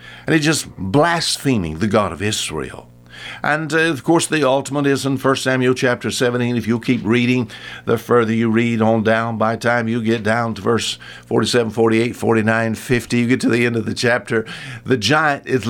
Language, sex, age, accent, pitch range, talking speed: English, male, 60-79, American, 105-135 Hz, 200 wpm